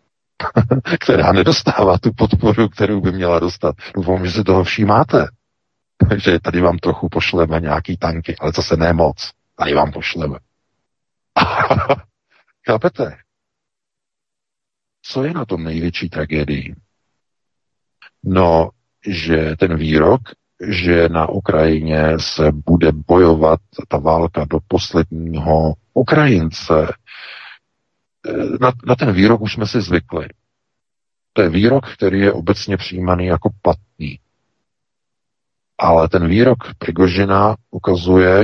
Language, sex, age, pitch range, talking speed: Czech, male, 50-69, 80-100 Hz, 110 wpm